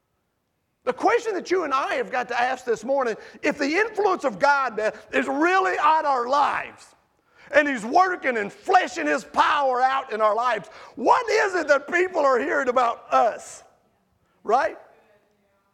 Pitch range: 240-360 Hz